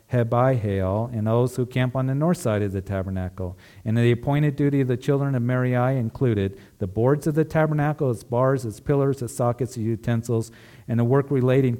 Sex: male